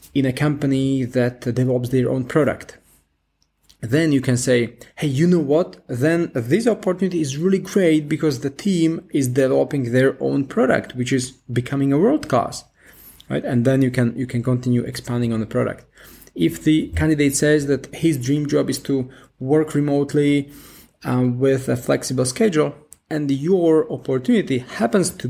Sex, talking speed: male, 165 wpm